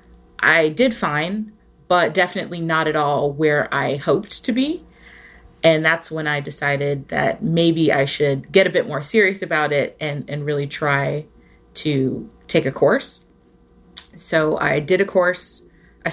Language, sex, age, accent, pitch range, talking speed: English, female, 20-39, American, 145-180 Hz, 160 wpm